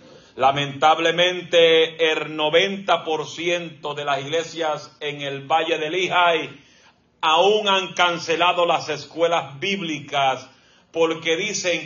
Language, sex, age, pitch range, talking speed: Spanish, male, 40-59, 145-180 Hz, 95 wpm